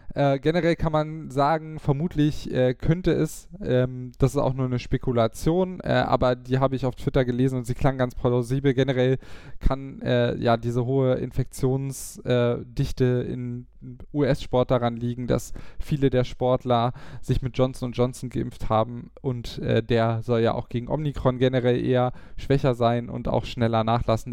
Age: 10-29